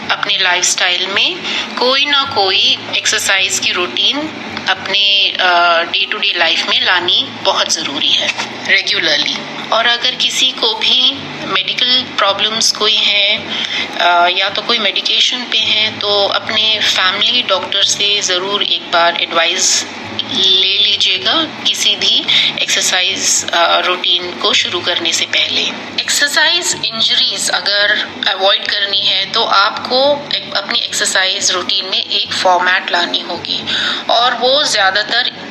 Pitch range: 185-230 Hz